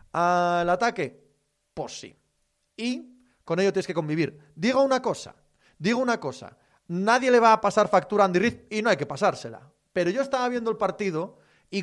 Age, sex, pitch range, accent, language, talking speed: 30-49, male, 170-245 Hz, Spanish, Spanish, 195 wpm